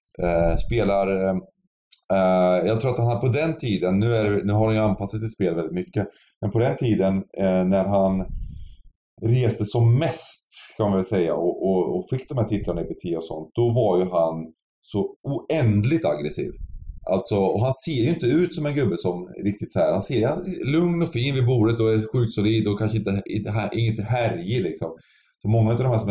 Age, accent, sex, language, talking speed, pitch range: 30-49, Swedish, male, English, 220 wpm, 95-115 Hz